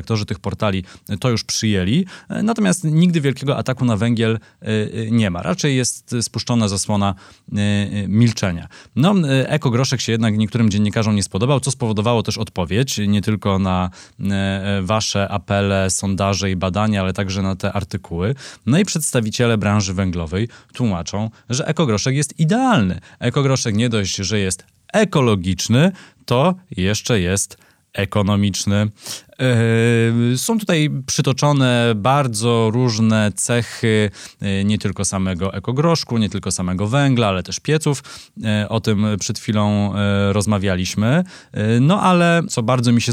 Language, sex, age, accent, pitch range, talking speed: Polish, male, 20-39, native, 100-130 Hz, 130 wpm